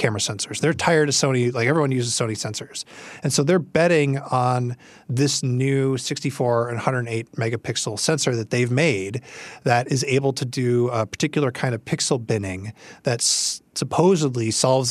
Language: English